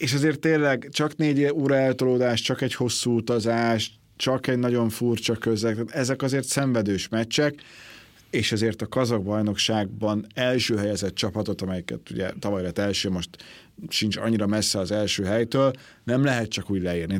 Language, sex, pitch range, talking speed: Hungarian, male, 105-130 Hz, 155 wpm